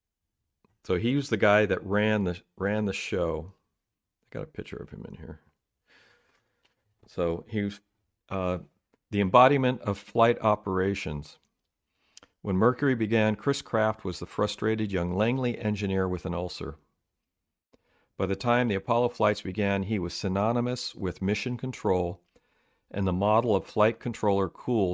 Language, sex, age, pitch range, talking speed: English, male, 40-59, 90-110 Hz, 150 wpm